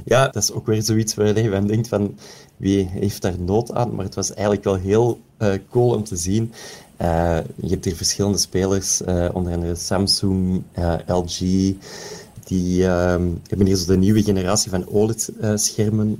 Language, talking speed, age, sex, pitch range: Dutch, 180 wpm, 30-49, male, 95-110 Hz